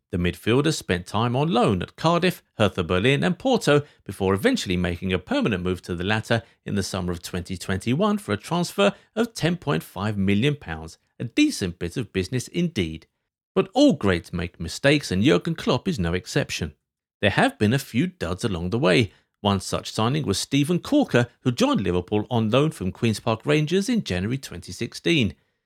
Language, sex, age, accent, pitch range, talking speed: English, male, 50-69, British, 90-145 Hz, 180 wpm